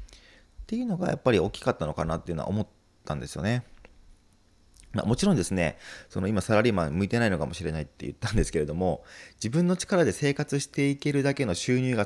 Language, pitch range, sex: Japanese, 85-140 Hz, male